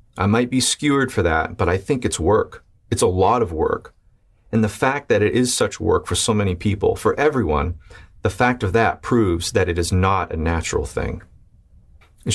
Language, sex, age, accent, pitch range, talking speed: English, male, 30-49, American, 85-115 Hz, 210 wpm